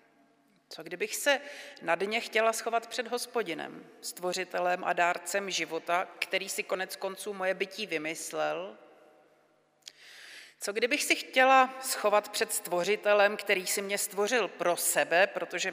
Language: Czech